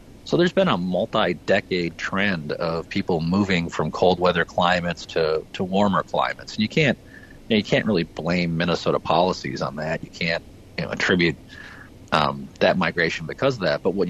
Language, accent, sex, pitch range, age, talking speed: English, American, male, 90-110 Hz, 40-59, 160 wpm